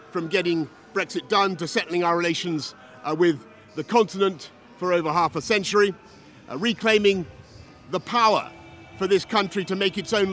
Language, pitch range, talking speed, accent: English, 160-200 Hz, 165 wpm, British